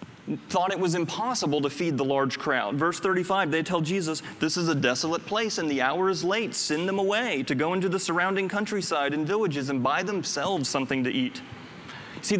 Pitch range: 145-195 Hz